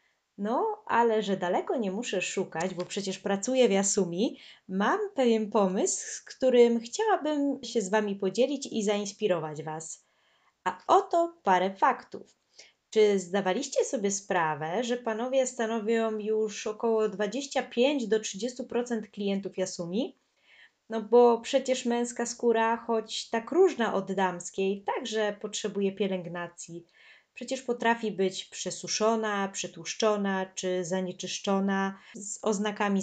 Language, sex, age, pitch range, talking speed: Polish, female, 20-39, 190-240 Hz, 115 wpm